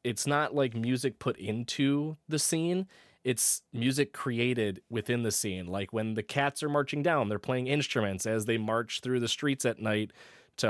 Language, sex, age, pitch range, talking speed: English, male, 20-39, 110-145 Hz, 185 wpm